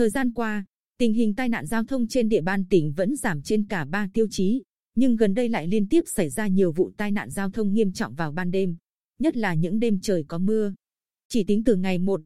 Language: Vietnamese